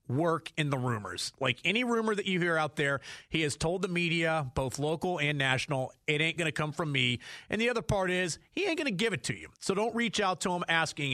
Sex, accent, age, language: male, American, 30-49, English